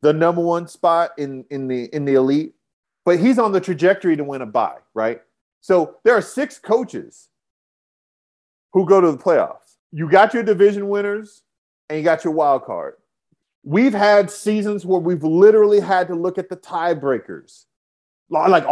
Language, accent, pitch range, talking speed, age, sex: English, American, 140-195 Hz, 175 wpm, 40-59, male